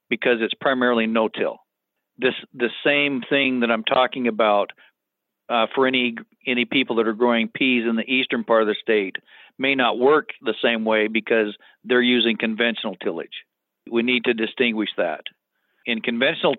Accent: American